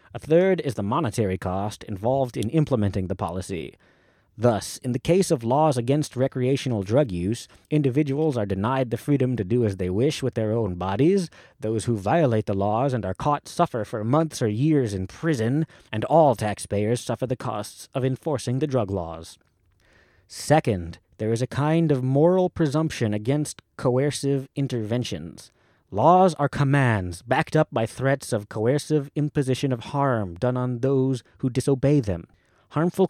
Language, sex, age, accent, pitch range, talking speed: English, male, 30-49, American, 110-150 Hz, 165 wpm